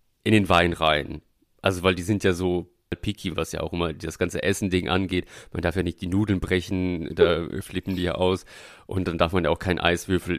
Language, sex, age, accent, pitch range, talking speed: German, male, 30-49, German, 85-105 Hz, 230 wpm